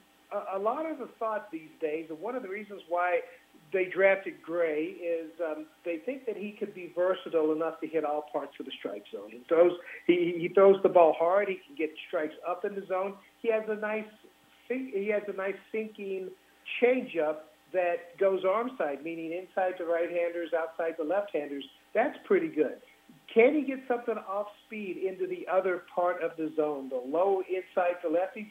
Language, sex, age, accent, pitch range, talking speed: English, male, 50-69, American, 170-225 Hz, 185 wpm